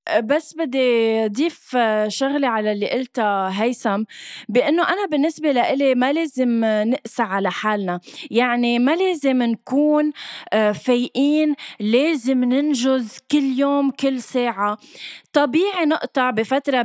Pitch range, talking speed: 220-295 Hz, 110 wpm